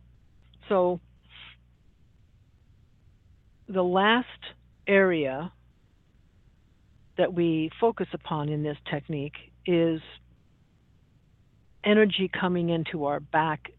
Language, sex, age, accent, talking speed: English, female, 50-69, American, 75 wpm